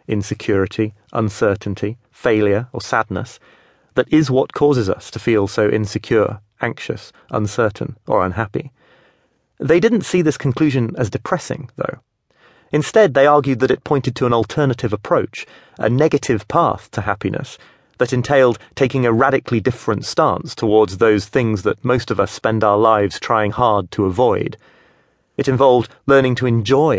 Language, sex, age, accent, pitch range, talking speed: English, male, 30-49, British, 110-140 Hz, 150 wpm